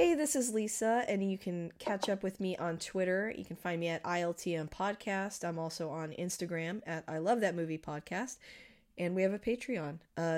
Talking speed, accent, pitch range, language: 210 wpm, American, 160-200 Hz, English